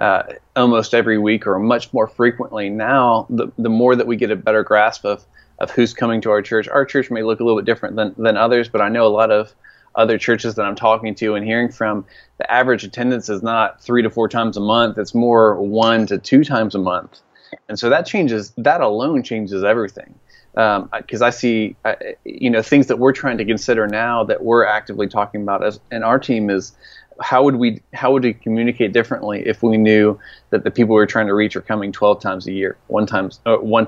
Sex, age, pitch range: male, 20-39, 105-120 Hz